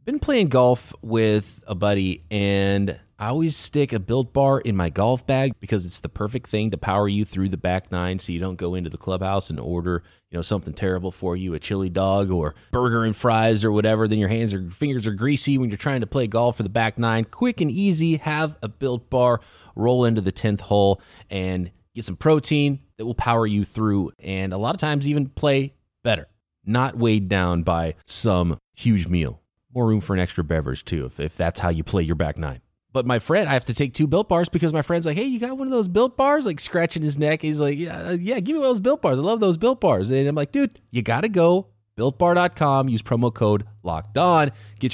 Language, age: English, 20-39